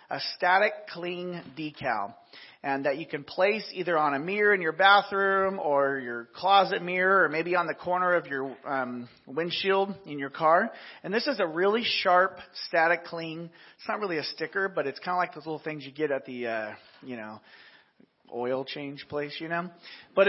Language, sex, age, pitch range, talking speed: English, male, 40-59, 140-195 Hz, 195 wpm